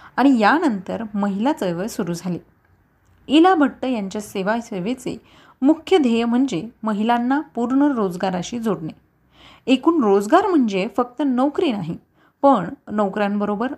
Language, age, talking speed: Marathi, 30-49, 110 wpm